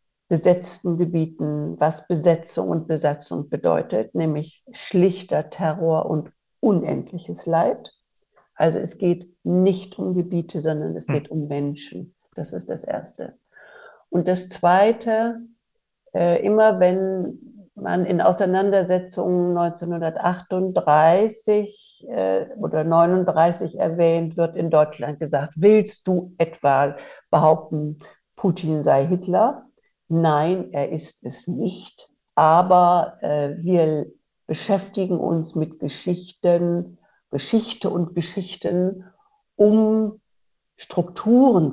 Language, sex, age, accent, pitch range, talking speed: German, female, 60-79, German, 160-190 Hz, 100 wpm